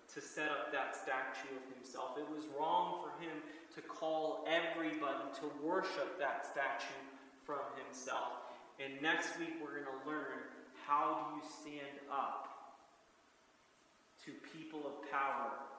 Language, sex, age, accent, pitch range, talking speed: English, male, 30-49, American, 135-155 Hz, 140 wpm